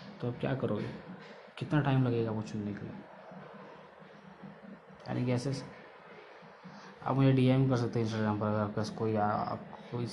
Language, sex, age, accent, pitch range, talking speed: Hindi, male, 20-39, native, 110-125 Hz, 150 wpm